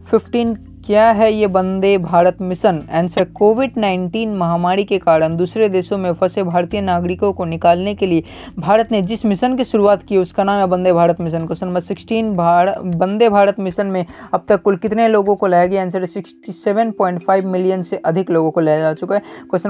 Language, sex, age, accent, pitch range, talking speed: Hindi, female, 20-39, native, 175-205 Hz, 190 wpm